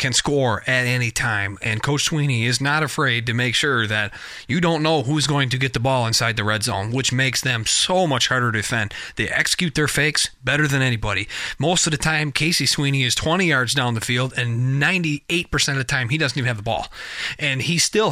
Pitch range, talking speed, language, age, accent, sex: 120-150 Hz, 230 wpm, English, 30-49, American, male